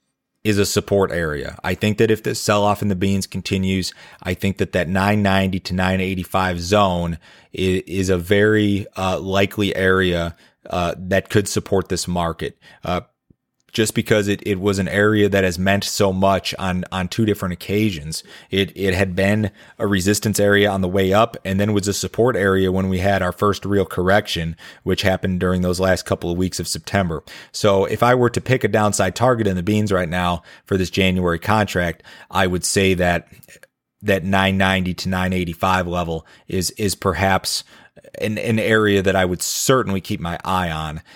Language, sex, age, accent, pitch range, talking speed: English, male, 30-49, American, 90-105 Hz, 185 wpm